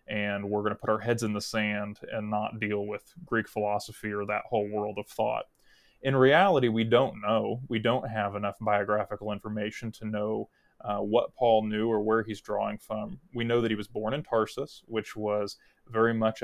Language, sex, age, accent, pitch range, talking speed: English, male, 20-39, American, 105-115 Hz, 200 wpm